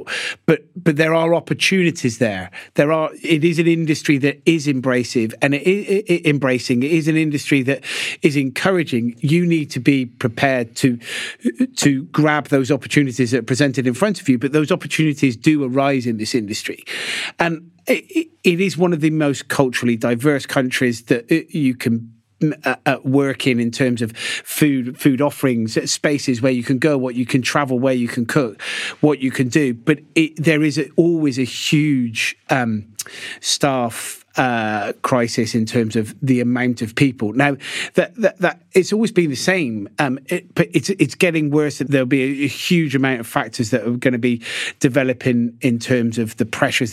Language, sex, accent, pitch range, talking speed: English, male, British, 125-160 Hz, 185 wpm